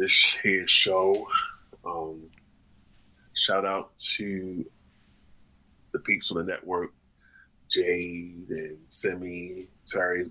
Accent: American